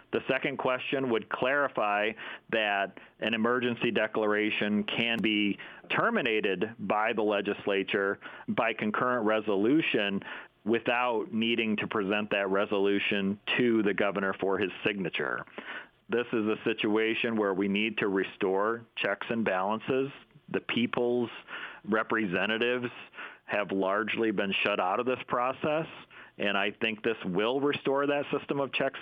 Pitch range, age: 105-125 Hz, 40-59